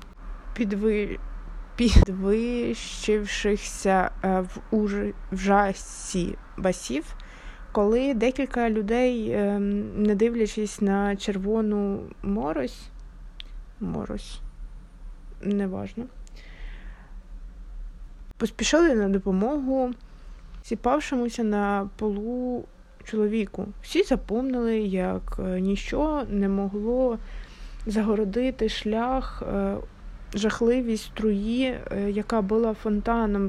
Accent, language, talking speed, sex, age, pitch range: native, Ukrainian, 60 wpm, female, 20-39, 195-240 Hz